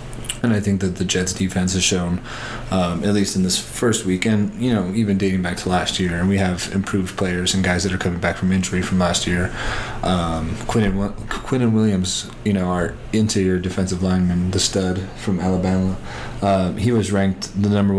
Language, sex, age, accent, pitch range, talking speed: English, male, 20-39, American, 90-105 Hz, 205 wpm